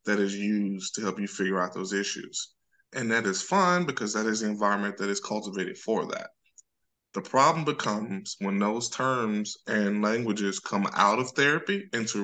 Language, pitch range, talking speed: English, 100-115 Hz, 180 wpm